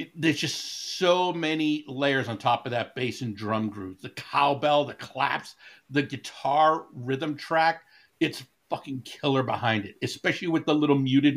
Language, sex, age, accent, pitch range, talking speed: English, male, 60-79, American, 125-160 Hz, 170 wpm